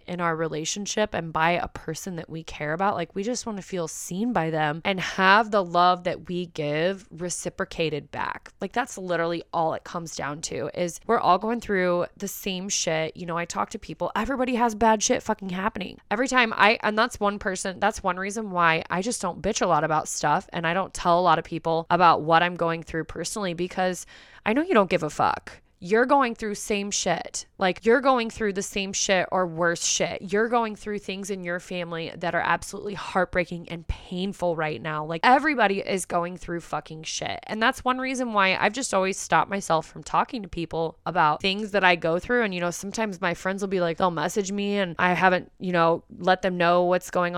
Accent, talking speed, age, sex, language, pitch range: American, 225 wpm, 20-39, female, English, 170-205 Hz